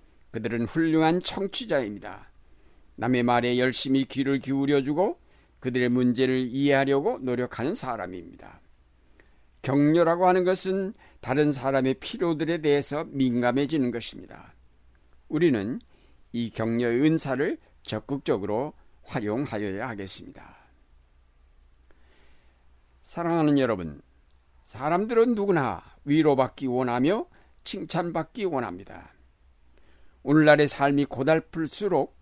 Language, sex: Korean, male